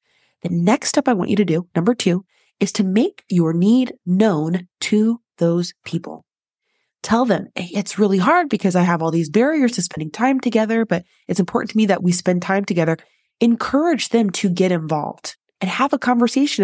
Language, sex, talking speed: English, female, 195 wpm